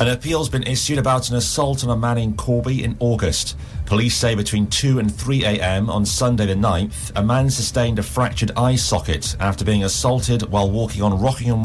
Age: 40-59